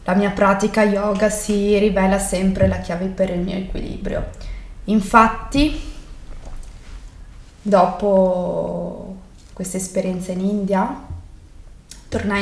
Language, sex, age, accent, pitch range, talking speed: Italian, female, 20-39, native, 185-210 Hz, 95 wpm